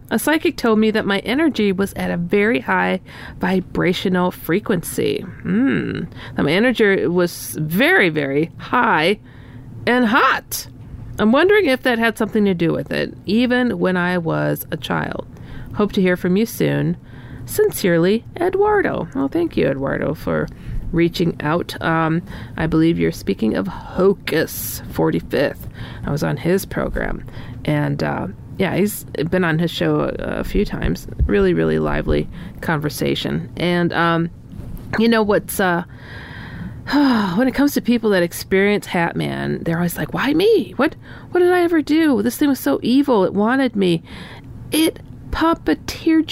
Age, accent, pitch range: 40-59, American, 155-245 Hz